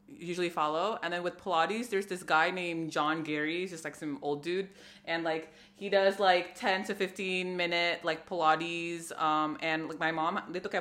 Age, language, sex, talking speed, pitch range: 20-39, Indonesian, female, 155 wpm, 160-195 Hz